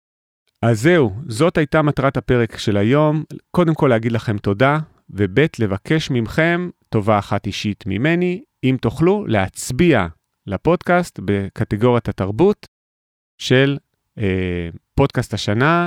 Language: Hebrew